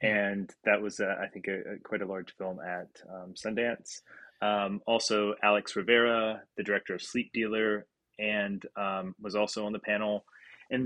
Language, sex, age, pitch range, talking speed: English, male, 20-39, 100-110 Hz, 165 wpm